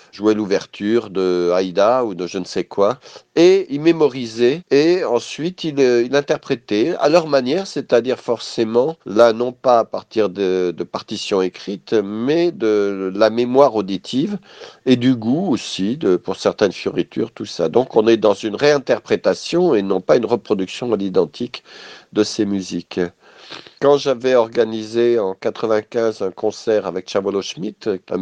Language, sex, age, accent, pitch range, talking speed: French, male, 50-69, French, 100-140 Hz, 160 wpm